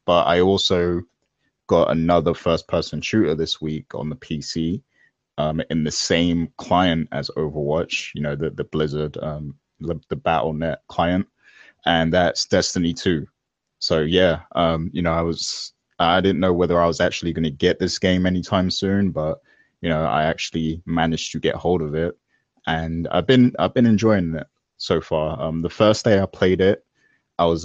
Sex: male